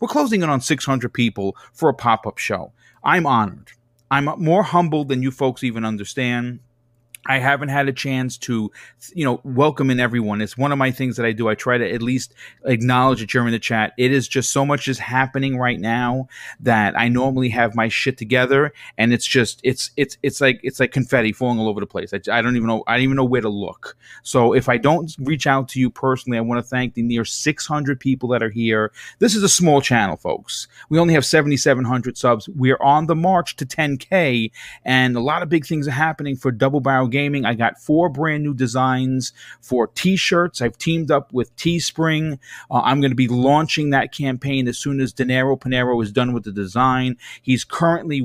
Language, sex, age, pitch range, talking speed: English, male, 30-49, 120-140 Hz, 215 wpm